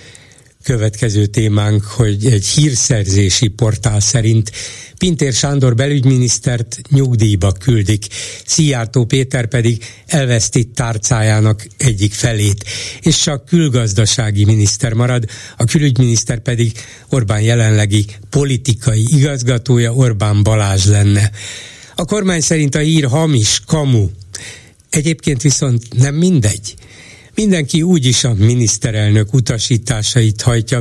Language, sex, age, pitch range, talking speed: Hungarian, male, 60-79, 110-140 Hz, 105 wpm